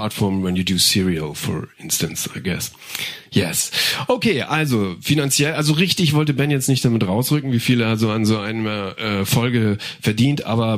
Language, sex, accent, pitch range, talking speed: German, male, German, 105-140 Hz, 175 wpm